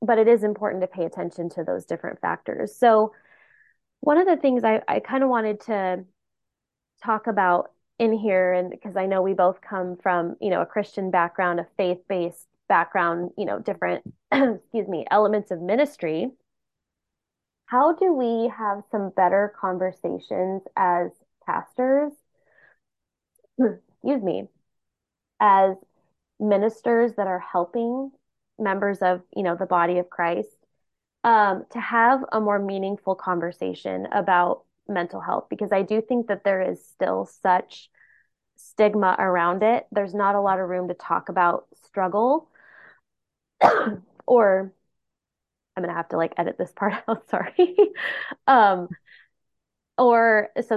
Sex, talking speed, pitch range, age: female, 140 wpm, 185-235 Hz, 20-39